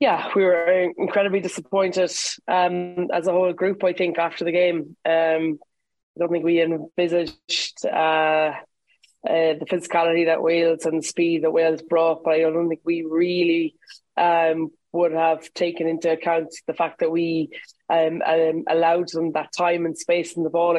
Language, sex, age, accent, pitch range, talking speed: English, female, 20-39, Irish, 165-180 Hz, 175 wpm